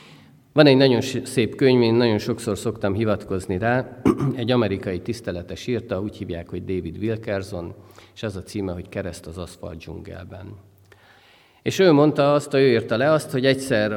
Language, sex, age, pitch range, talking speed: Hungarian, male, 50-69, 95-130 Hz, 170 wpm